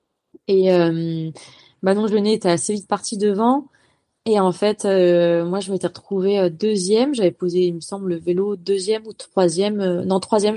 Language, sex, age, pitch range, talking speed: French, female, 20-39, 175-215 Hz, 185 wpm